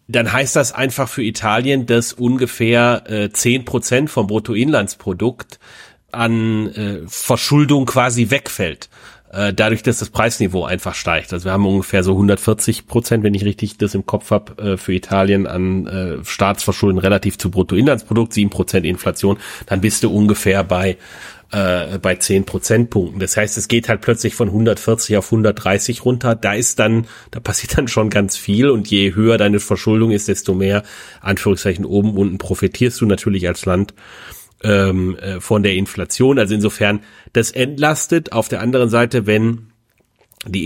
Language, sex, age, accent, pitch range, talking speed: German, male, 30-49, German, 100-115 Hz, 160 wpm